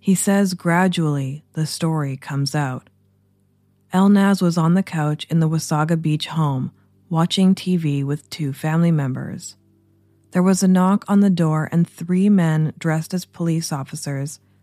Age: 20-39